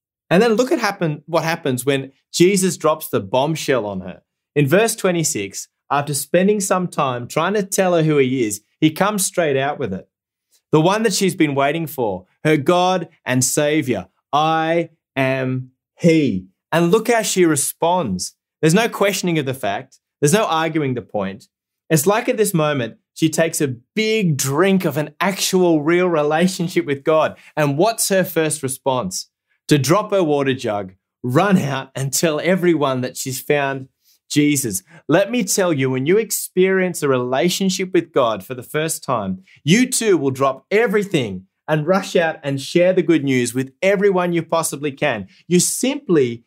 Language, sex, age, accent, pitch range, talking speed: English, male, 20-39, Australian, 135-190 Hz, 175 wpm